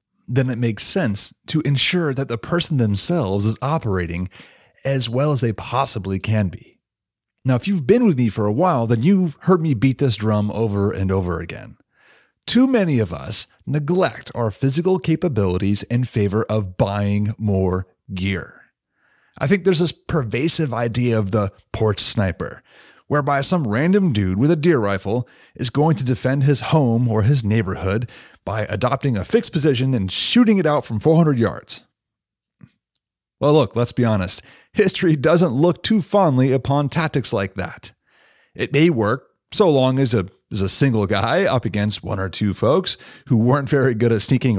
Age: 30-49